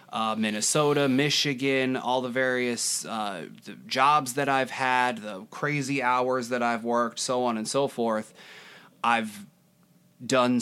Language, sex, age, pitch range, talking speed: English, male, 20-39, 110-125 Hz, 135 wpm